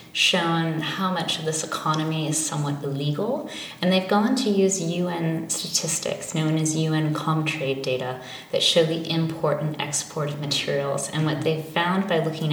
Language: English